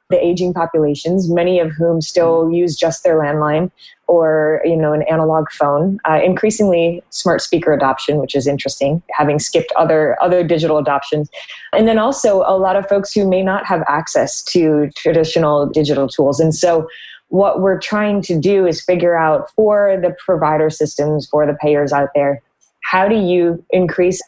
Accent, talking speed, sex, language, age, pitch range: American, 175 wpm, female, English, 20-39, 150-185 Hz